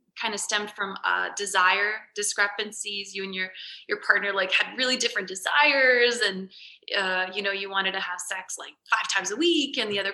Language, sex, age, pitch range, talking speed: English, female, 20-39, 180-225 Hz, 200 wpm